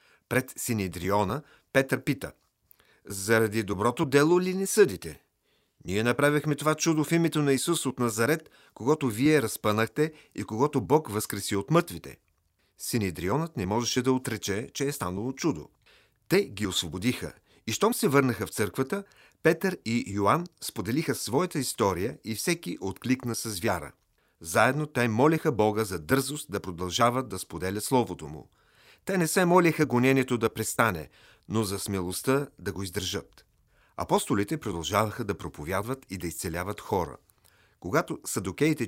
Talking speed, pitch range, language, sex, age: 145 wpm, 100-140 Hz, Bulgarian, male, 40-59